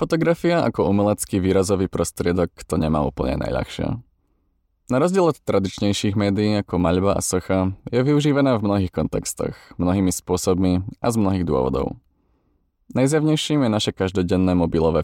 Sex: male